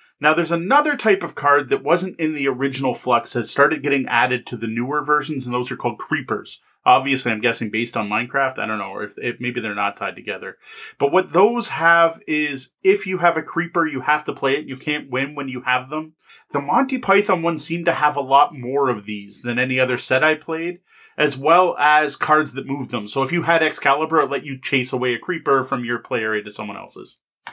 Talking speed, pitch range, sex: 230 wpm, 130-170 Hz, male